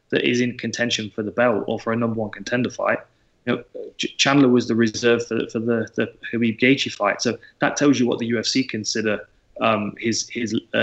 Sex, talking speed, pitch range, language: male, 220 wpm, 110-120 Hz, English